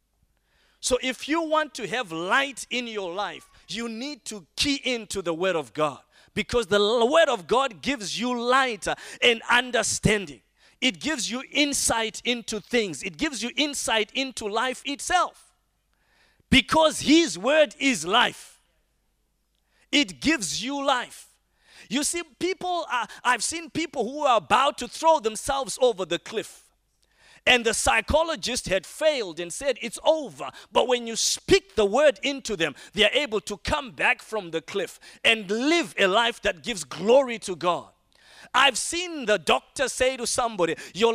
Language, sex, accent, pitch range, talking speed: English, male, South African, 210-280 Hz, 160 wpm